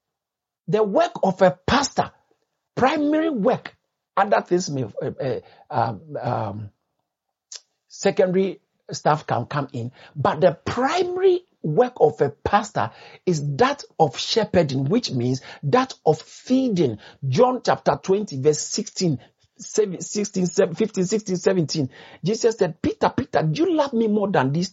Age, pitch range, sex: 60-79, 135-210 Hz, male